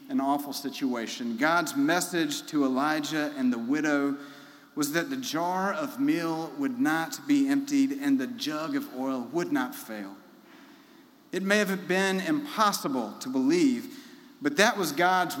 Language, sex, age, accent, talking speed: English, male, 40-59, American, 150 wpm